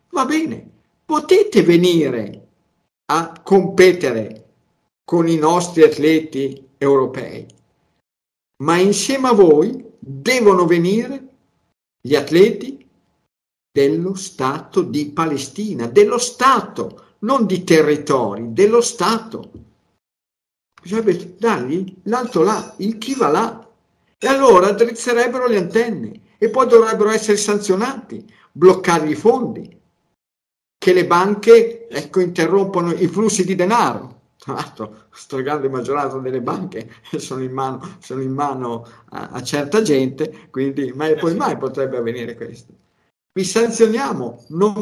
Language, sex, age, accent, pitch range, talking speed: Italian, male, 50-69, native, 140-220 Hz, 110 wpm